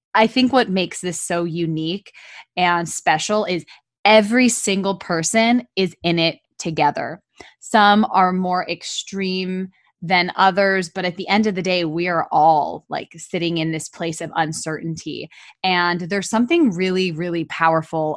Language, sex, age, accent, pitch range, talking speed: English, female, 20-39, American, 165-195 Hz, 150 wpm